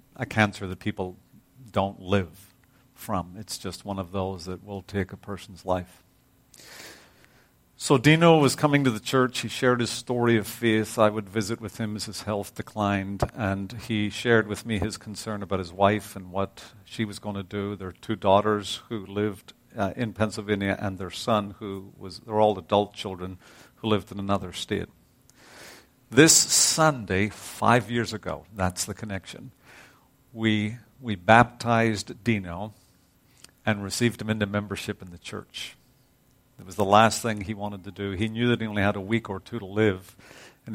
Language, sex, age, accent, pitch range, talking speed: English, male, 50-69, American, 100-115 Hz, 180 wpm